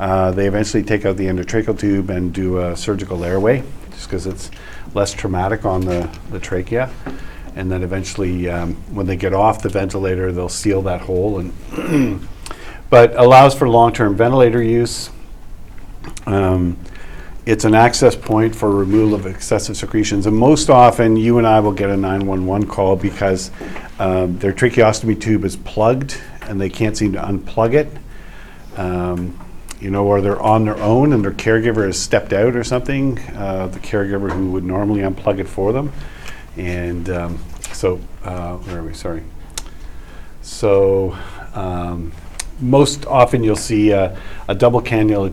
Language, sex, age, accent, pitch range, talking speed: English, male, 50-69, American, 90-110 Hz, 160 wpm